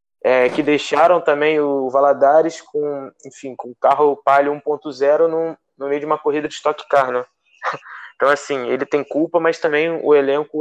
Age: 20-39